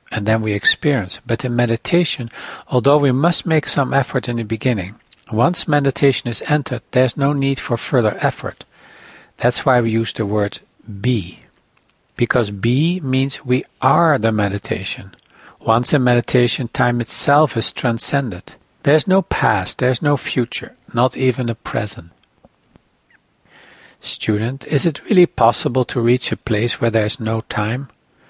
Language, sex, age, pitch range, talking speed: English, male, 60-79, 115-140 Hz, 155 wpm